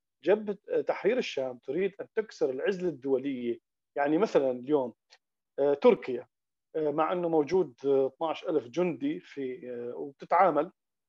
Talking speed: 105 wpm